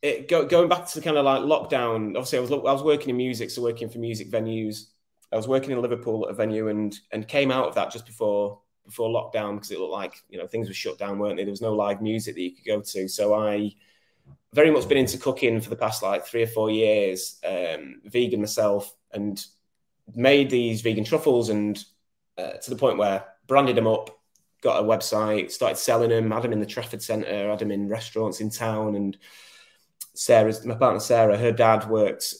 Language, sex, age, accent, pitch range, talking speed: English, male, 20-39, British, 105-125 Hz, 220 wpm